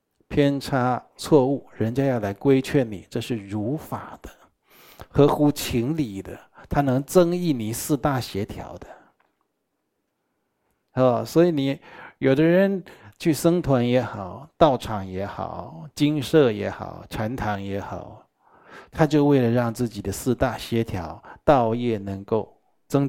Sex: male